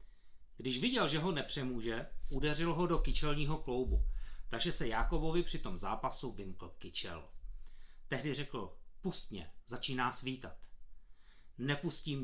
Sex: male